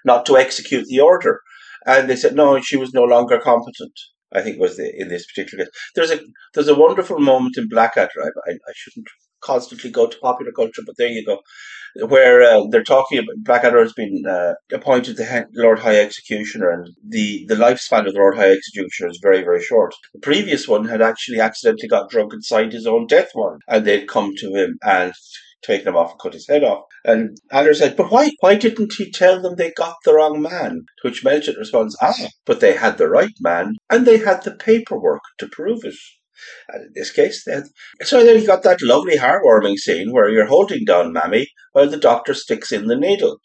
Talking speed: 220 wpm